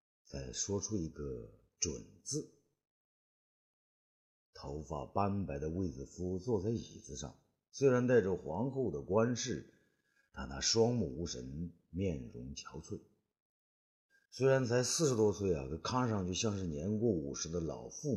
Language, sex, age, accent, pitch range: Chinese, male, 50-69, native, 85-125 Hz